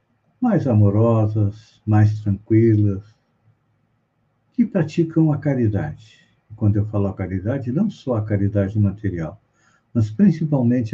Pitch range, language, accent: 110-140 Hz, Portuguese, Brazilian